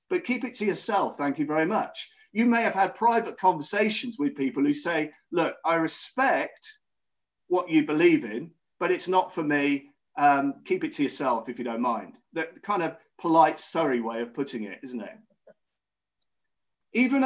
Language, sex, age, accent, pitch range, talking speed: English, male, 50-69, British, 170-255 Hz, 180 wpm